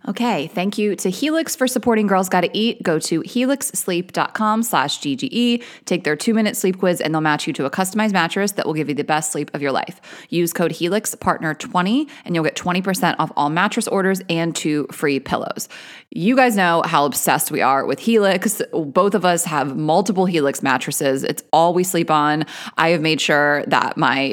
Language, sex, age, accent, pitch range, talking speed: English, female, 20-39, American, 155-210 Hz, 195 wpm